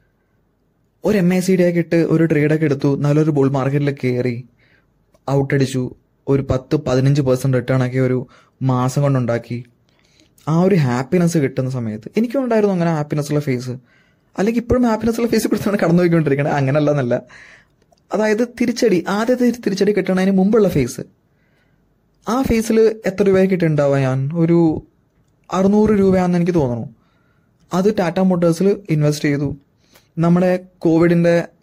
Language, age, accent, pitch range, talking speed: Malayalam, 20-39, native, 140-190 Hz, 125 wpm